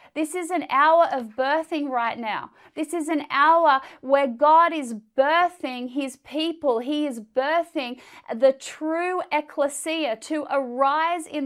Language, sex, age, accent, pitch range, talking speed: English, female, 30-49, Australian, 270-315 Hz, 140 wpm